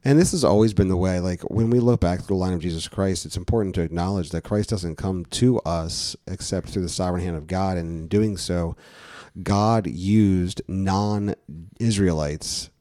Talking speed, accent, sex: 195 wpm, American, male